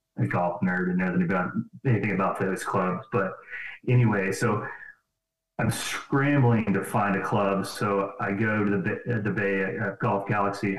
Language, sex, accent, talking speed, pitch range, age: English, male, American, 170 wpm, 100-115 Hz, 30-49